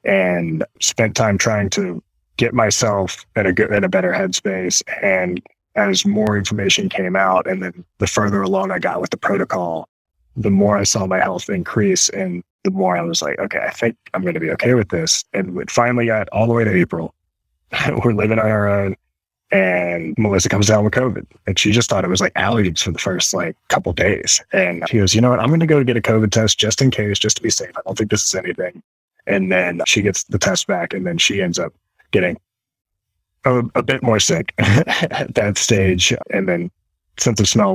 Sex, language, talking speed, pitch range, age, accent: male, English, 220 wpm, 95-125 Hz, 20-39, American